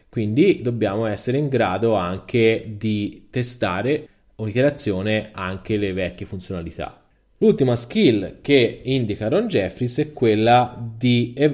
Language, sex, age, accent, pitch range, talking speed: Italian, male, 20-39, native, 105-135 Hz, 115 wpm